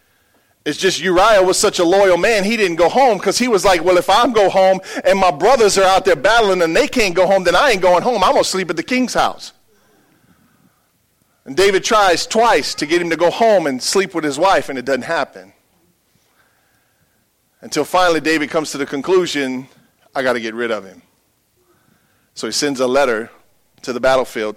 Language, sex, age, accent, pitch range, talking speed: English, male, 40-59, American, 115-185 Hz, 215 wpm